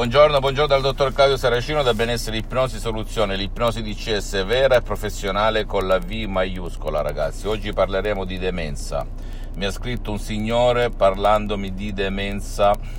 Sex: male